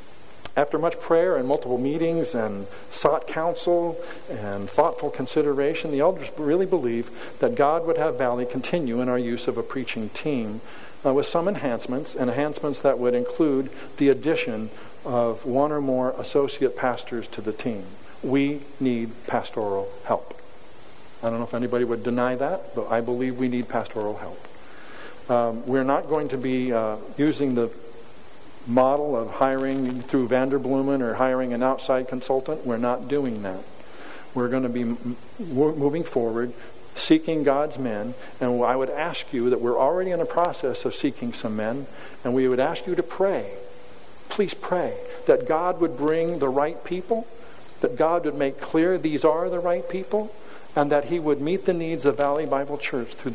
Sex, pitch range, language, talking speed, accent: male, 125-160 Hz, English, 170 wpm, American